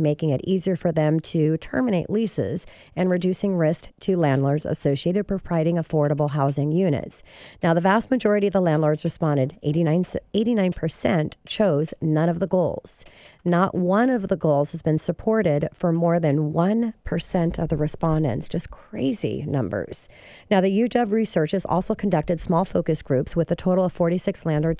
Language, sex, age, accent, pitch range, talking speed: English, female, 40-59, American, 155-190 Hz, 165 wpm